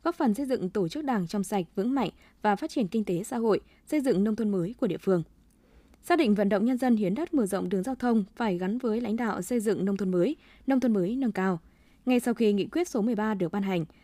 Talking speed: 275 wpm